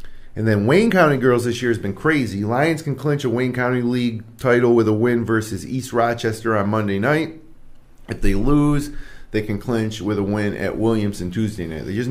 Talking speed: 210 wpm